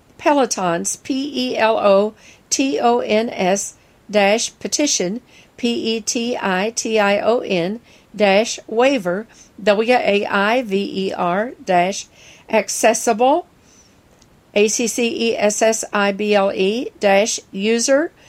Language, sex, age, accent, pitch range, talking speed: English, female, 50-69, American, 205-255 Hz, 130 wpm